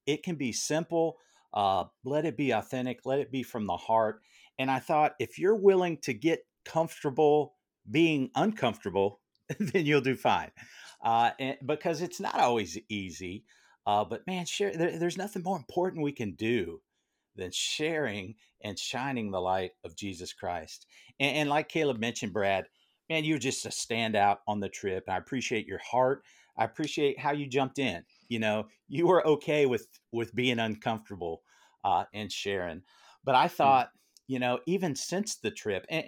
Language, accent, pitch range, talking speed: English, American, 110-155 Hz, 170 wpm